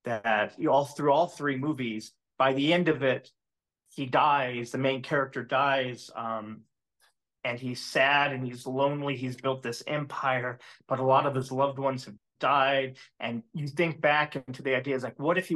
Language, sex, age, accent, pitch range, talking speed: English, male, 30-49, American, 125-140 Hz, 195 wpm